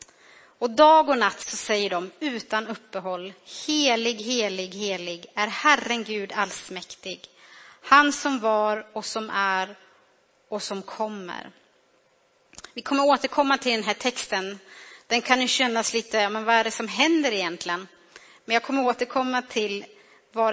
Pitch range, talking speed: 210-275 Hz, 145 wpm